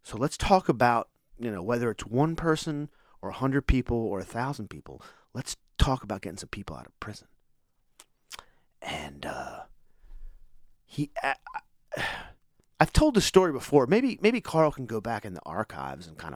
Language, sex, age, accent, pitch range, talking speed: English, male, 40-59, American, 105-135 Hz, 175 wpm